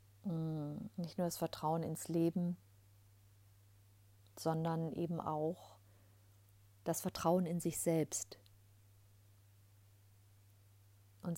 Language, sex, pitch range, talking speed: German, female, 100-165 Hz, 80 wpm